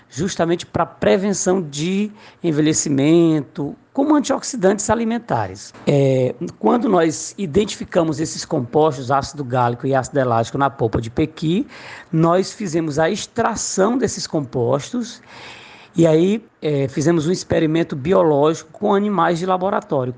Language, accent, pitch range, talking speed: Portuguese, Brazilian, 140-190 Hz, 115 wpm